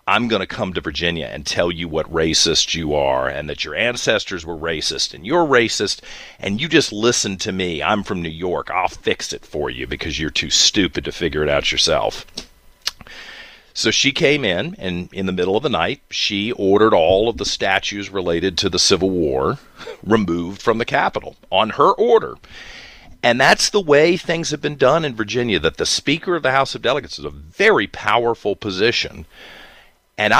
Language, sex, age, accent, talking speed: English, male, 40-59, American, 195 wpm